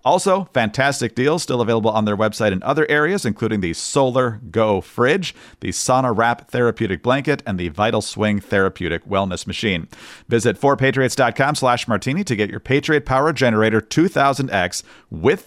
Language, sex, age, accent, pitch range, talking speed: English, male, 40-59, American, 110-140 Hz, 155 wpm